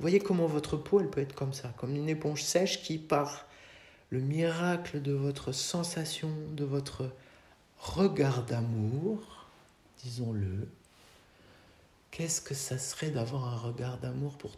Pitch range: 125-150 Hz